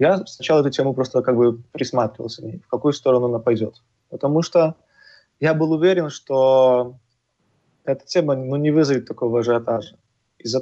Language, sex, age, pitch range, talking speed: Russian, male, 20-39, 125-155 Hz, 145 wpm